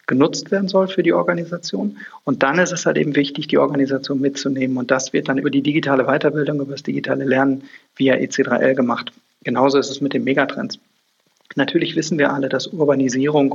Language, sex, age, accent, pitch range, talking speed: German, male, 40-59, German, 135-175 Hz, 190 wpm